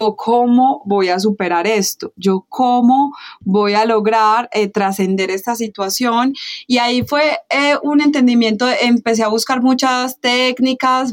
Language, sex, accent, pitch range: Spanish, female, Colombian, 195-235 Hz